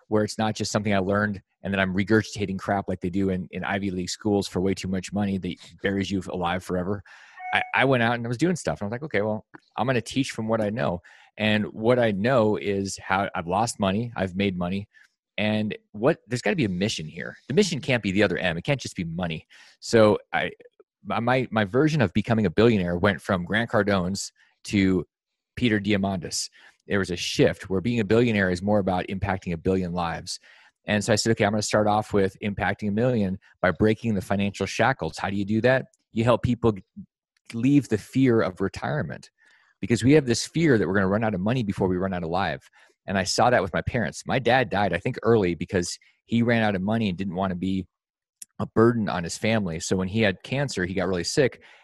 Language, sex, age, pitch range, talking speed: English, male, 30-49, 95-115 Hz, 235 wpm